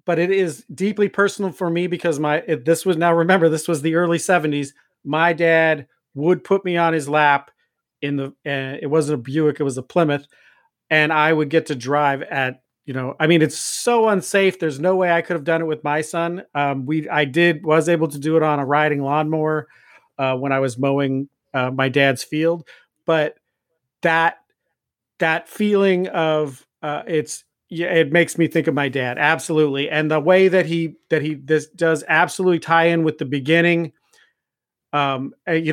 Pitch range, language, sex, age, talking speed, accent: 150-170 Hz, English, male, 40-59, 195 wpm, American